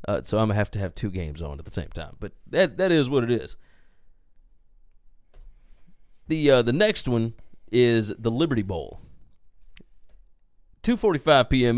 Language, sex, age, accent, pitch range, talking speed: English, male, 30-49, American, 115-165 Hz, 175 wpm